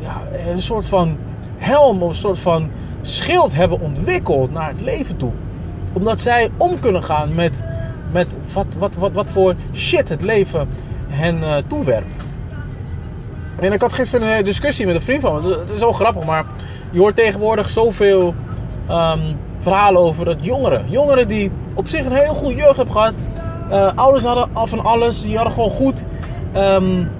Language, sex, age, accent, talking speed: Dutch, male, 30-49, Dutch, 175 wpm